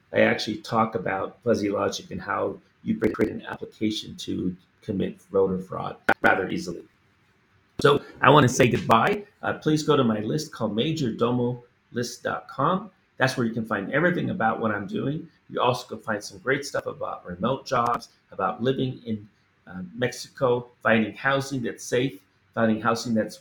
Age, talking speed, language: 30-49, 165 wpm, English